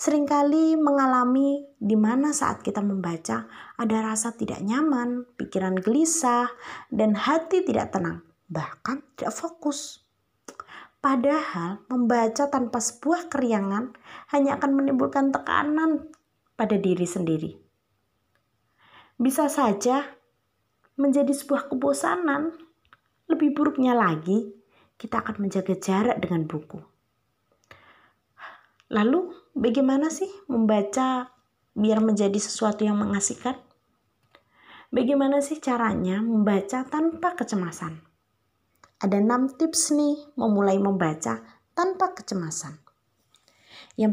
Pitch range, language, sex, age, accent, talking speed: 200-290 Hz, Indonesian, female, 20-39, native, 95 wpm